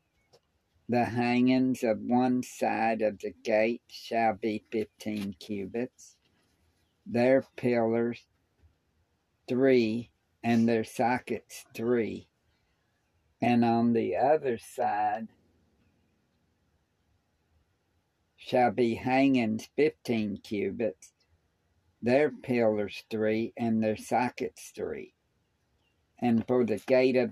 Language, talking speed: English, 90 wpm